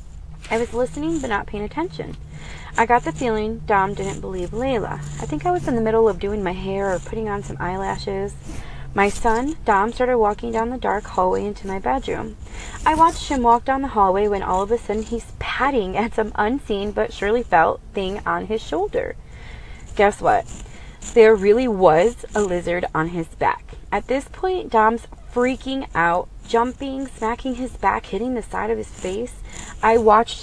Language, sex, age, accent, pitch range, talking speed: English, female, 30-49, American, 185-240 Hz, 185 wpm